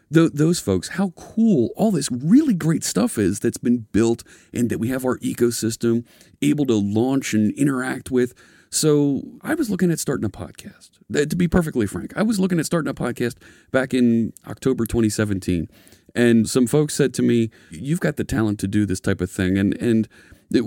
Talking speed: 195 wpm